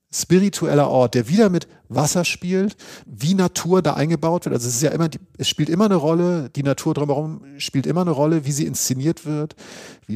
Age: 50-69